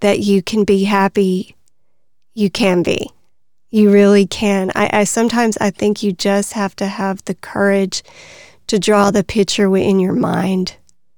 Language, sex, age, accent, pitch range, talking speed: English, female, 30-49, American, 195-215 Hz, 160 wpm